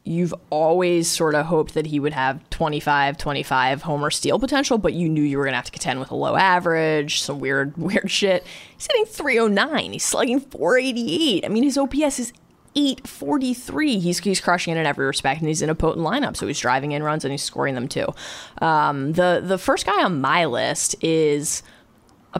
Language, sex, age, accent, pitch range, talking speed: English, female, 20-39, American, 145-190 Hz, 200 wpm